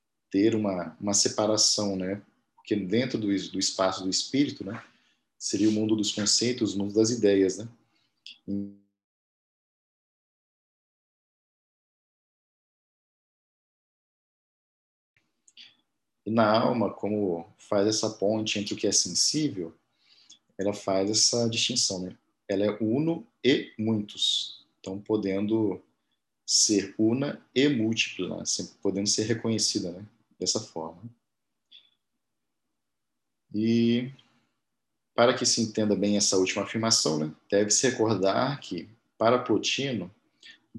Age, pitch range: 40-59, 95-115 Hz